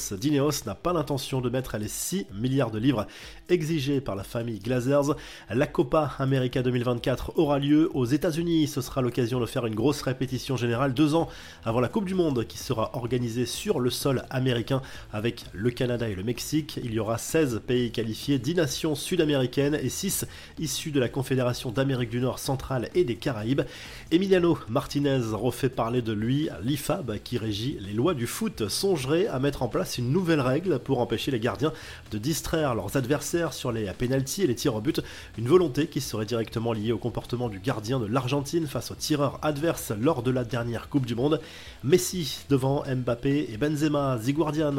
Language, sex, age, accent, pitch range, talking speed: French, male, 30-49, French, 120-150 Hz, 190 wpm